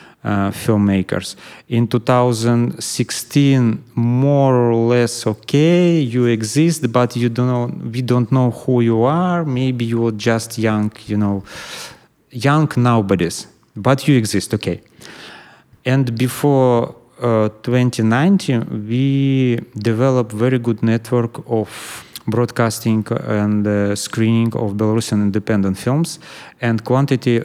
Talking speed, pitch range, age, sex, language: 115 wpm, 105-125 Hz, 30-49, male, English